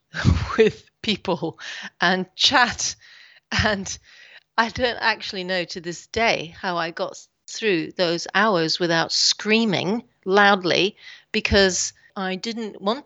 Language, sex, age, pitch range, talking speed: English, female, 40-59, 160-190 Hz, 115 wpm